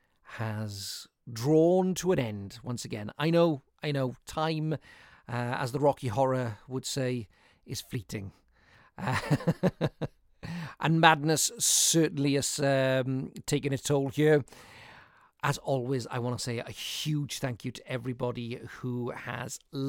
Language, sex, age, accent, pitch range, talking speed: English, male, 40-59, British, 125-155 Hz, 135 wpm